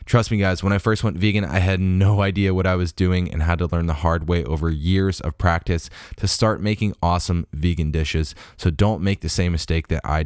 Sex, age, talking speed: male, 10-29, 240 wpm